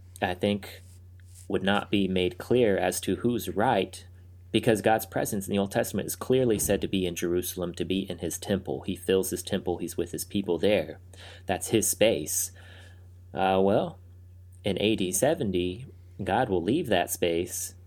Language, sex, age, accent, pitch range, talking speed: English, male, 30-49, American, 90-100 Hz, 175 wpm